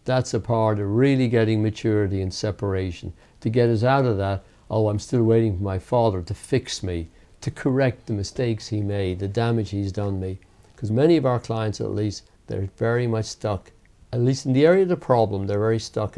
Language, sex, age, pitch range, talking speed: English, male, 60-79, 100-125 Hz, 215 wpm